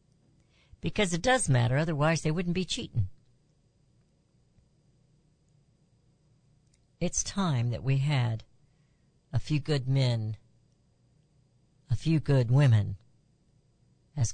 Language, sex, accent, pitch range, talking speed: English, female, American, 125-155 Hz, 95 wpm